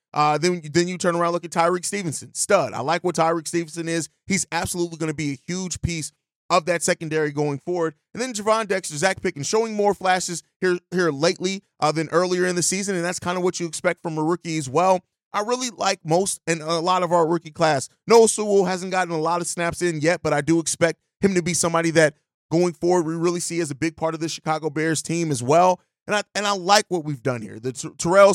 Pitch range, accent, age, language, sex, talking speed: 155-185 Hz, American, 30-49, English, male, 250 wpm